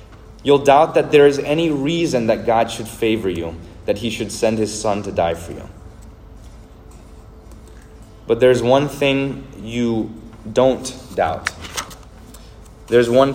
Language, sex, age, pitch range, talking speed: English, male, 30-49, 105-120 Hz, 140 wpm